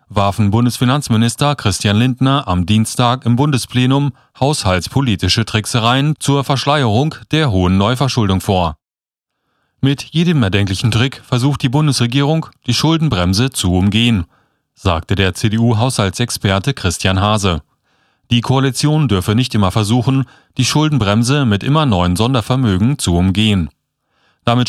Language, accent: German, German